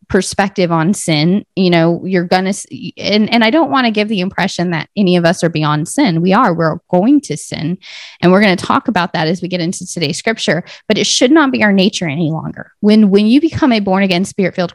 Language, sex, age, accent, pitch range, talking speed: English, female, 20-39, American, 180-230 Hz, 240 wpm